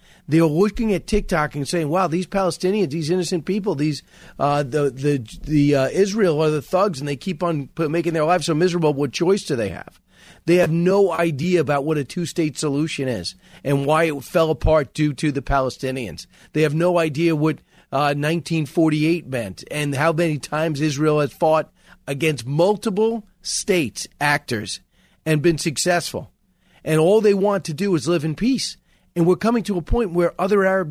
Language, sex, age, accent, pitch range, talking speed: English, male, 40-59, American, 150-190 Hz, 190 wpm